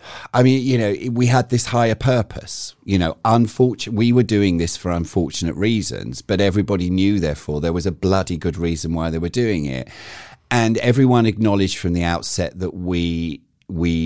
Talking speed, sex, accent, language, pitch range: 185 wpm, male, British, English, 80-120 Hz